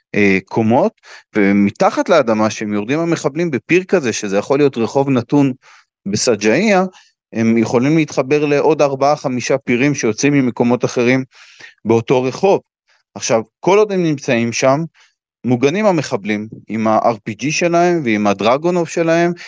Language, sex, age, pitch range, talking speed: Hebrew, male, 30-49, 110-150 Hz, 125 wpm